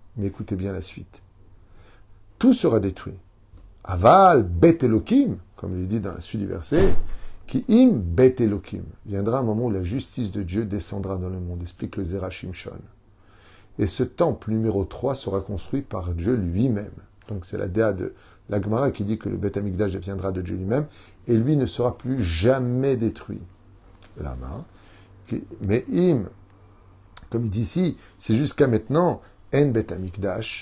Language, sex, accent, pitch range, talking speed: French, male, French, 95-120 Hz, 165 wpm